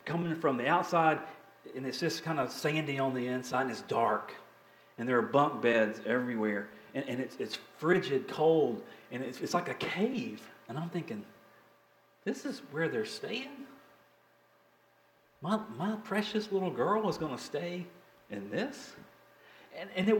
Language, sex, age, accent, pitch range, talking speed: English, male, 40-59, American, 135-195 Hz, 165 wpm